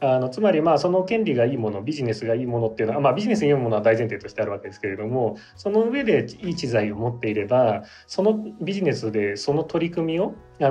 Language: Japanese